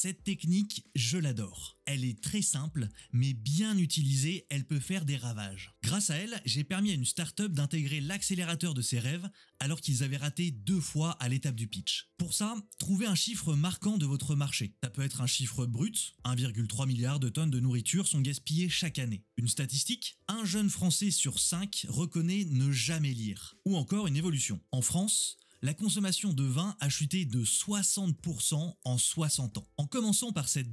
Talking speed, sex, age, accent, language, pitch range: 185 wpm, male, 20-39, French, French, 135-185 Hz